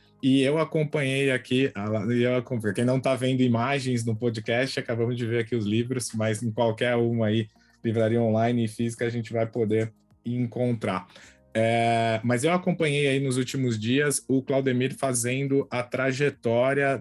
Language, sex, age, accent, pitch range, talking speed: Portuguese, male, 20-39, Brazilian, 110-130 Hz, 155 wpm